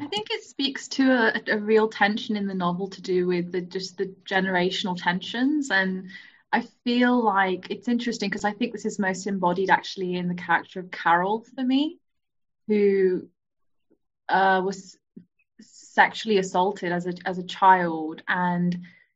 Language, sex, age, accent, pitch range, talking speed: English, female, 20-39, British, 185-210 Hz, 165 wpm